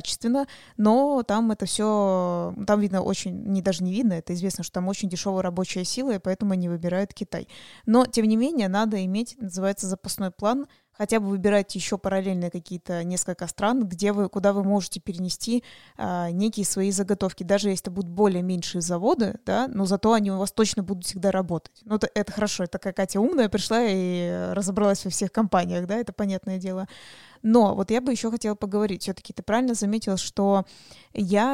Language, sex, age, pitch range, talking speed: Russian, female, 20-39, 190-220 Hz, 190 wpm